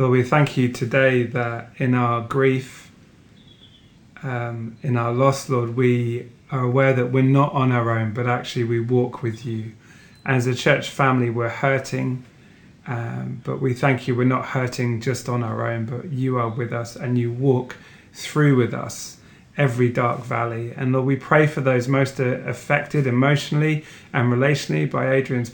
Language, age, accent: English, 30-49, British